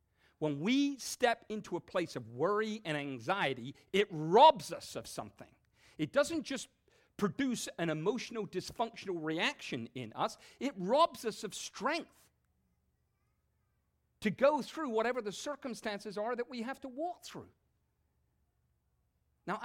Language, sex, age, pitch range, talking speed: English, male, 50-69, 135-205 Hz, 135 wpm